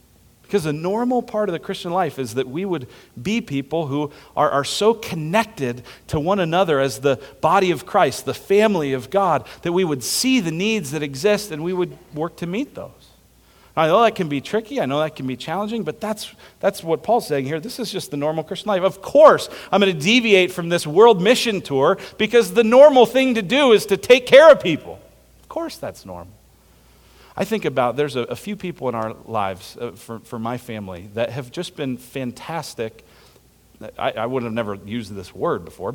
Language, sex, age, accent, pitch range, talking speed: English, male, 40-59, American, 130-200 Hz, 215 wpm